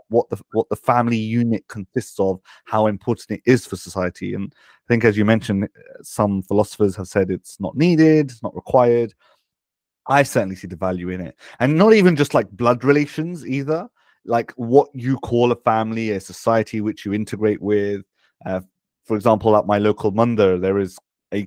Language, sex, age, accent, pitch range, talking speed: English, male, 30-49, British, 100-120 Hz, 185 wpm